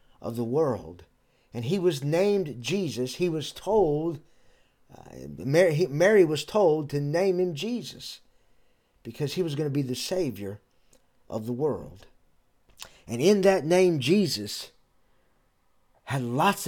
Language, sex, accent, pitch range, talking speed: English, male, American, 120-160 Hz, 130 wpm